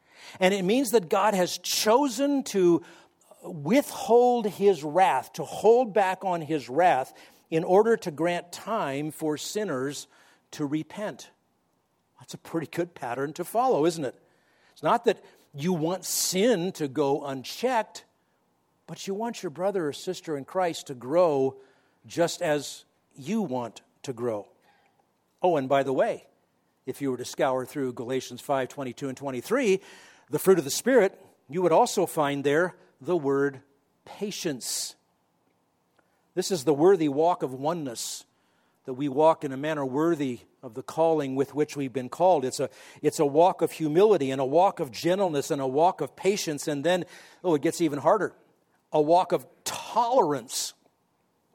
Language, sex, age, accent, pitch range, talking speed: English, male, 50-69, American, 140-185 Hz, 160 wpm